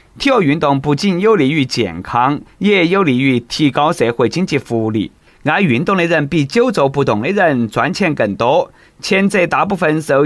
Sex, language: male, Chinese